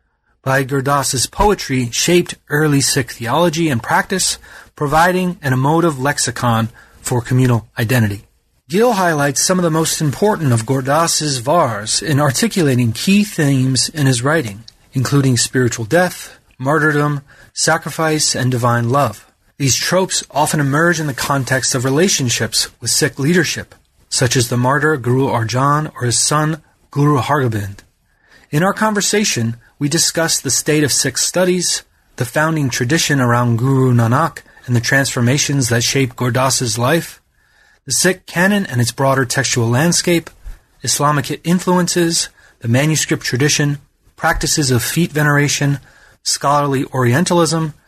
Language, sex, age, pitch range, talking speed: English, male, 30-49, 125-160 Hz, 135 wpm